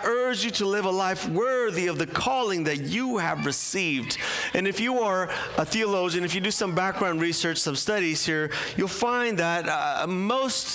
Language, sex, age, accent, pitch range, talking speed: English, male, 40-59, American, 155-205 Hz, 190 wpm